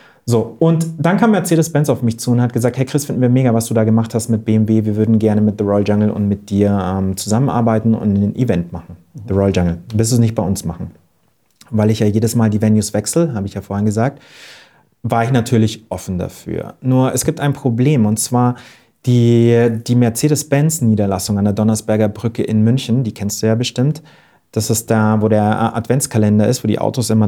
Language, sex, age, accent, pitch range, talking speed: English, male, 30-49, German, 105-125 Hz, 220 wpm